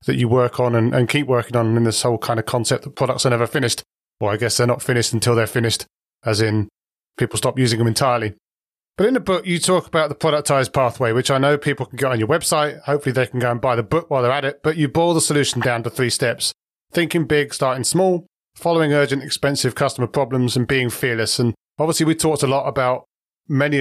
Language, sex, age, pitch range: English, male, 30-49, 120-145 Hz